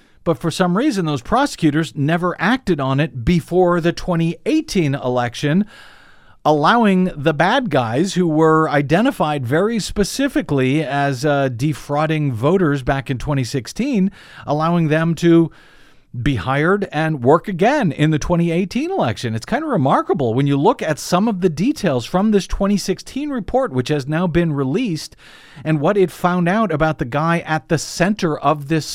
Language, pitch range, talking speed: English, 130-170 Hz, 160 wpm